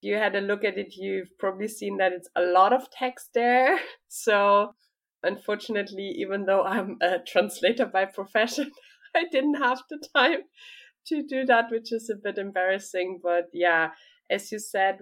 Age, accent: 20-39, German